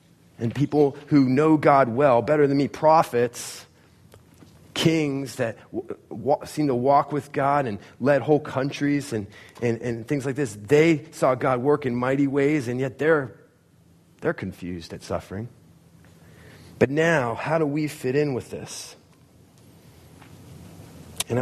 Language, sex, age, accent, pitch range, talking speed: English, male, 30-49, American, 110-145 Hz, 150 wpm